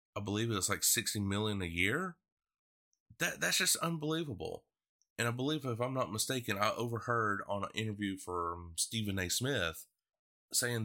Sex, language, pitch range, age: male, English, 95-120 Hz, 30-49